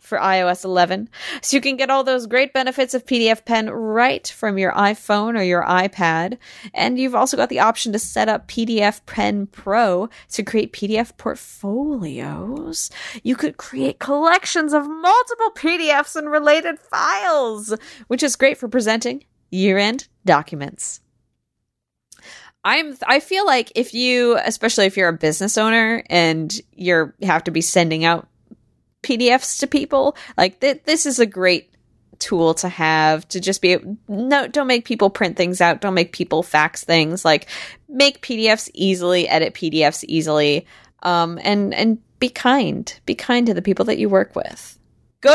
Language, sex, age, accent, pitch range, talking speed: English, female, 20-39, American, 180-265 Hz, 165 wpm